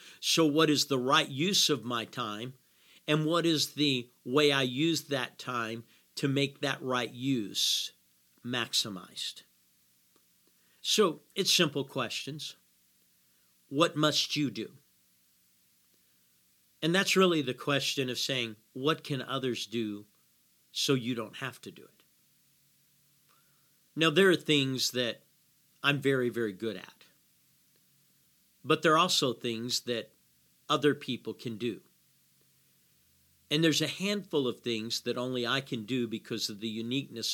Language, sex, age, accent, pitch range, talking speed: English, male, 50-69, American, 105-150 Hz, 135 wpm